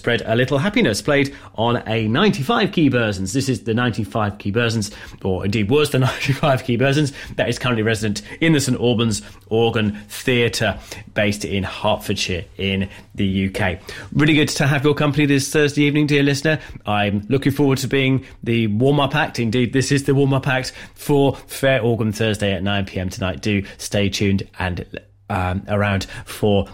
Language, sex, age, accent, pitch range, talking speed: English, male, 30-49, British, 100-135 Hz, 175 wpm